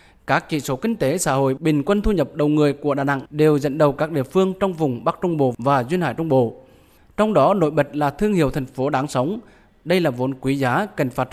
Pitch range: 135-175 Hz